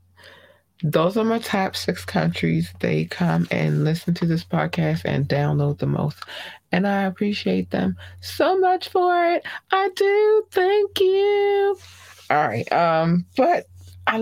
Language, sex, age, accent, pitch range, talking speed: English, female, 20-39, American, 145-185 Hz, 145 wpm